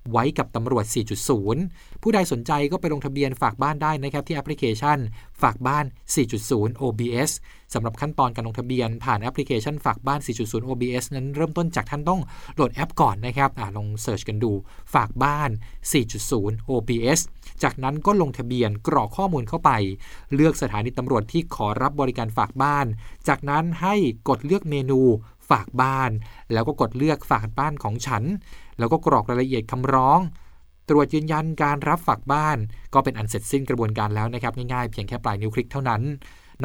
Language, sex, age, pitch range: Thai, male, 20-39, 115-145 Hz